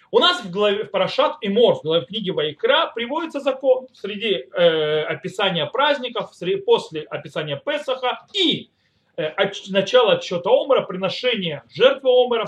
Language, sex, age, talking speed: Russian, male, 30-49, 150 wpm